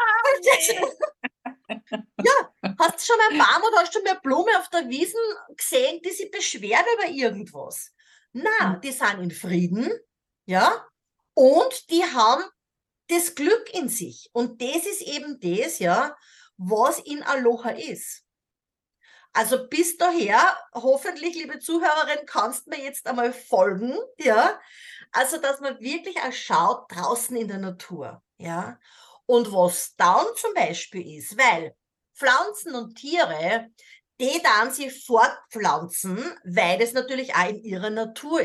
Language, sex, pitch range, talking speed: German, female, 225-365 Hz, 135 wpm